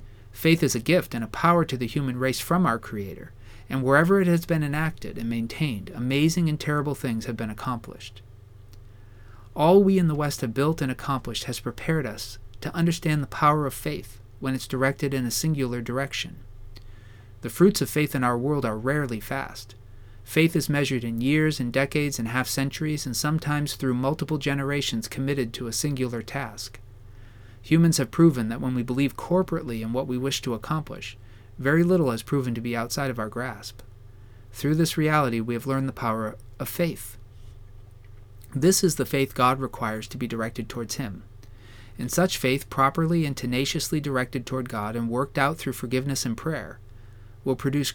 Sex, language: male, English